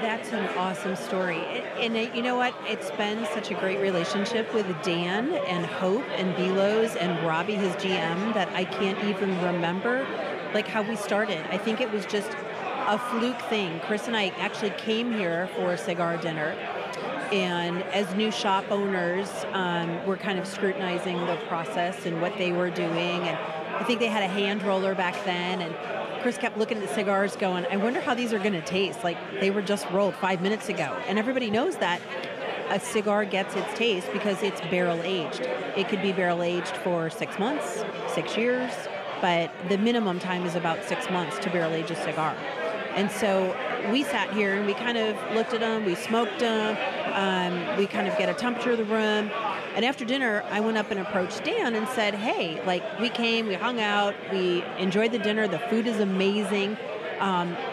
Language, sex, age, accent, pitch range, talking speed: English, female, 40-59, American, 185-220 Hz, 195 wpm